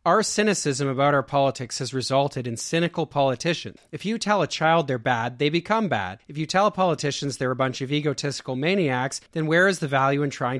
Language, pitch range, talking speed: English, 115-145 Hz, 215 wpm